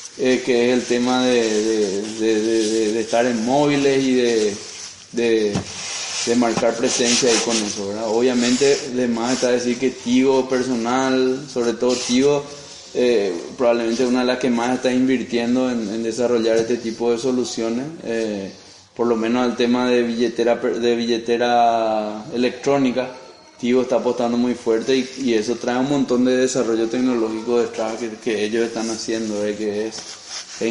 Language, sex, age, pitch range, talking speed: Spanish, male, 20-39, 115-130 Hz, 170 wpm